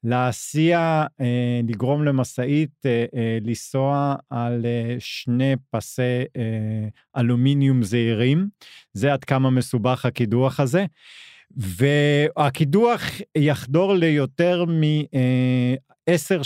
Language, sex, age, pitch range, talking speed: Hebrew, male, 40-59, 120-155 Hz, 70 wpm